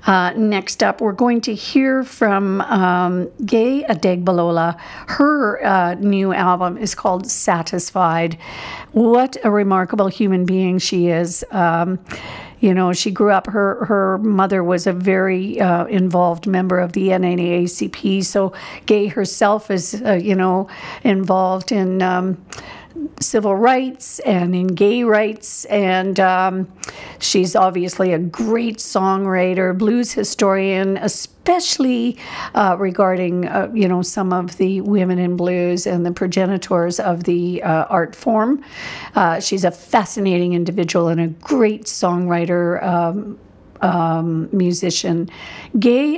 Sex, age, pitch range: female, 50-69, 180-215 Hz